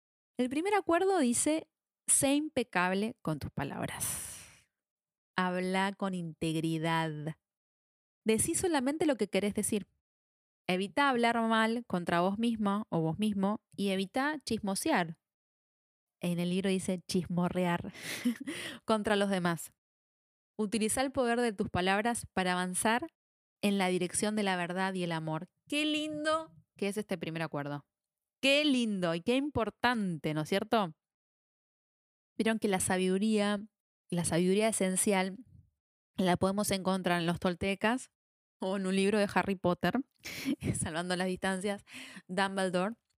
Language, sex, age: Spanish, female, 20-39